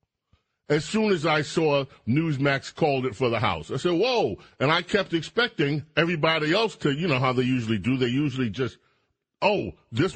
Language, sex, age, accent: English, male, 40-59, American